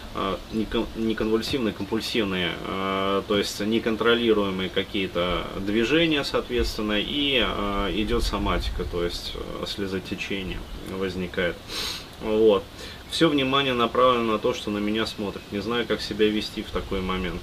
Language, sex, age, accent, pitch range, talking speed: Russian, male, 20-39, native, 100-115 Hz, 115 wpm